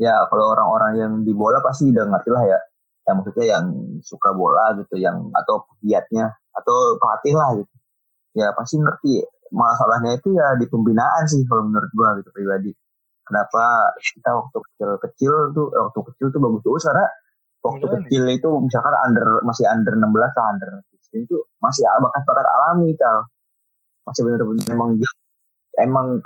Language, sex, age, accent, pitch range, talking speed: Indonesian, male, 20-39, native, 110-180 Hz, 160 wpm